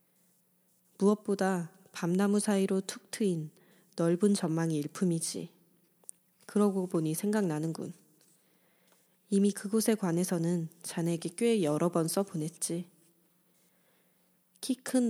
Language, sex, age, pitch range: Korean, female, 20-39, 170-195 Hz